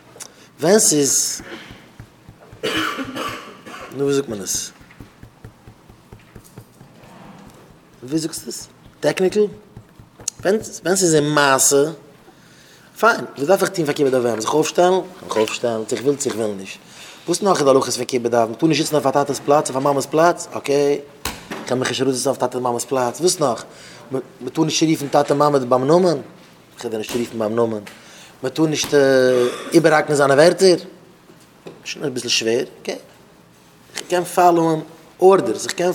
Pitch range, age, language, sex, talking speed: 125-165 Hz, 30-49, English, male, 145 wpm